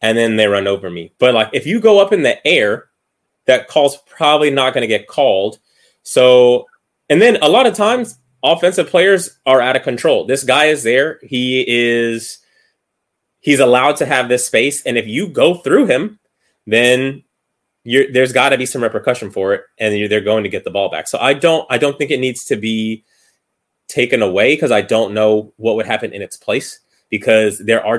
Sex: male